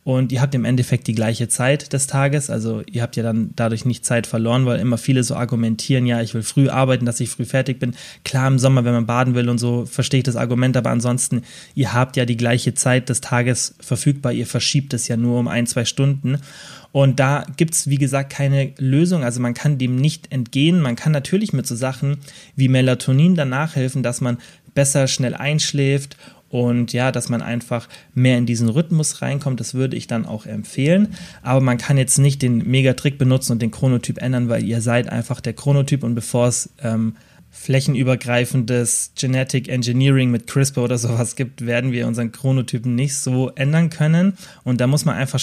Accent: German